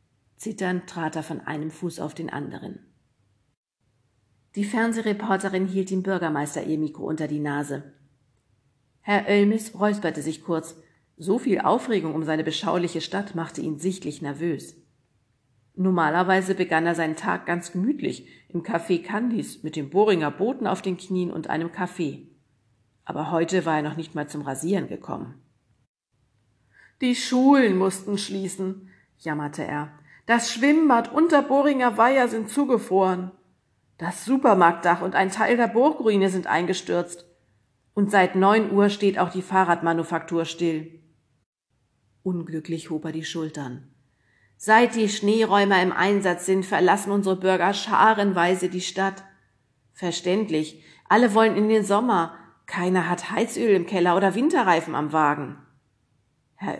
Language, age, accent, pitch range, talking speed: German, 50-69, German, 150-195 Hz, 135 wpm